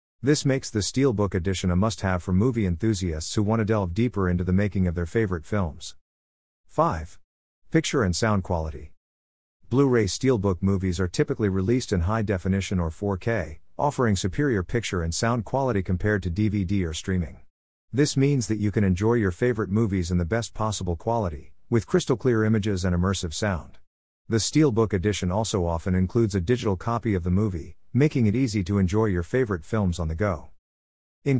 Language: English